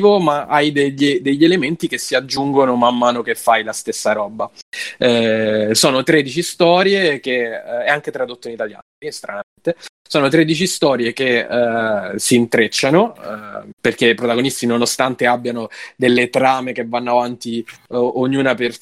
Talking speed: 145 wpm